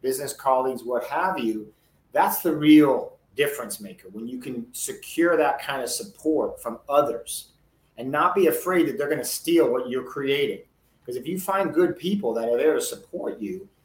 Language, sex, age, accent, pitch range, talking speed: English, male, 40-59, American, 130-195 Hz, 190 wpm